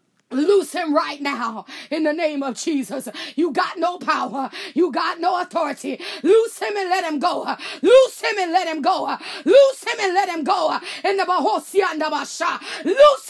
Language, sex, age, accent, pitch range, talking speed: English, female, 30-49, American, 330-405 Hz, 190 wpm